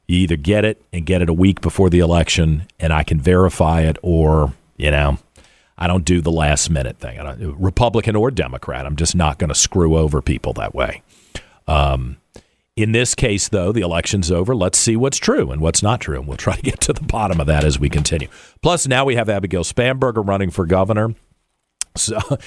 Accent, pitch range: American, 80-110 Hz